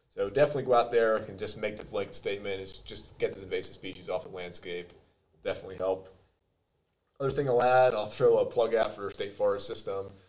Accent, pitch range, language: American, 95-130 Hz, English